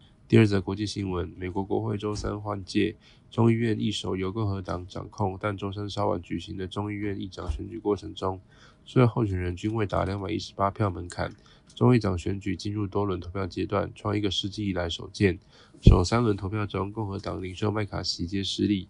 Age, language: 20-39, Chinese